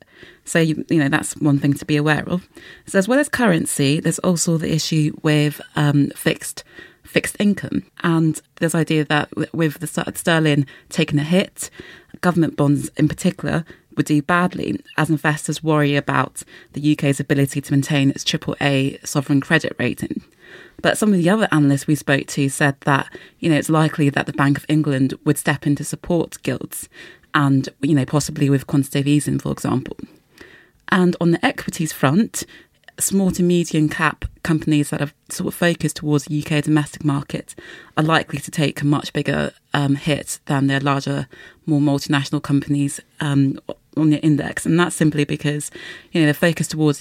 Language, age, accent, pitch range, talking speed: English, 30-49, British, 145-160 Hz, 175 wpm